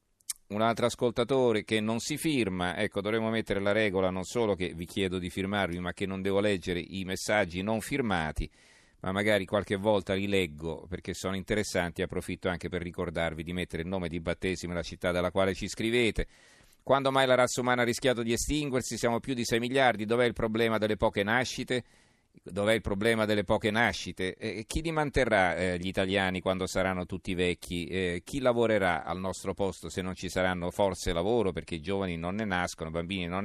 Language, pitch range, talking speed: Italian, 95-115 Hz, 195 wpm